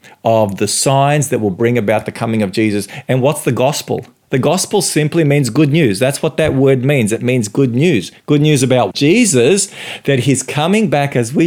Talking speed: 210 wpm